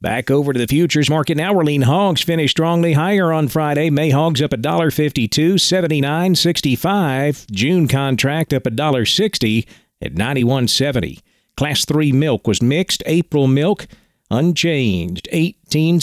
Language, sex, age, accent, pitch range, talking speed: English, male, 50-69, American, 130-170 Hz, 140 wpm